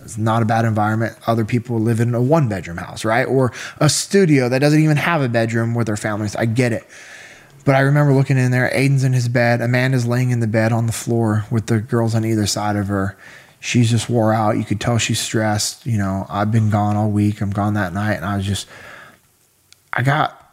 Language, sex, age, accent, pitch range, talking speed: English, male, 20-39, American, 110-125 Hz, 235 wpm